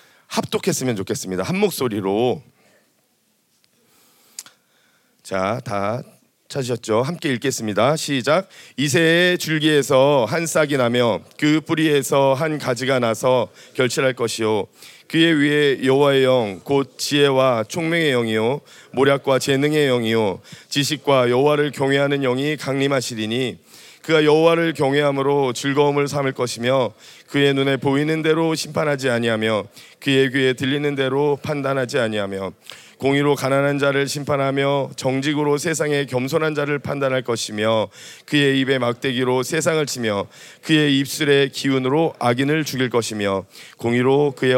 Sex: male